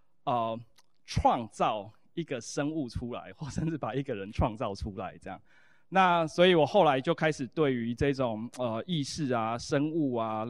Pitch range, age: 125-160 Hz, 20-39